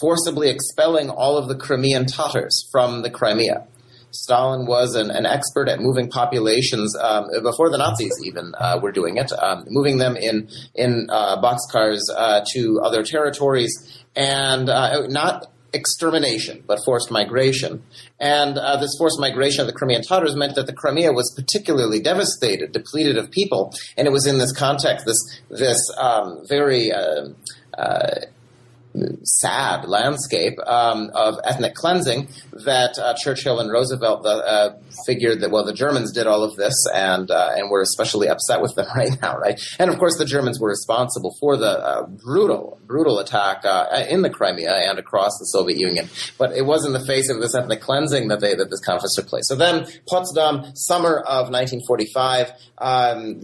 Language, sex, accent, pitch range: English, male, American, 120-145 Hz